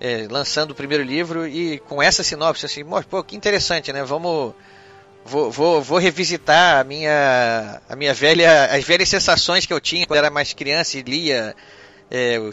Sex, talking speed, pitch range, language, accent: male, 170 wpm, 140-180 Hz, Portuguese, Brazilian